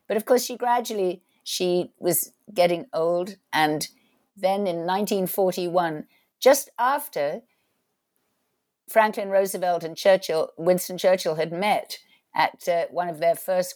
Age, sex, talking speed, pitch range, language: 60-79, female, 125 wpm, 165-205 Hz, English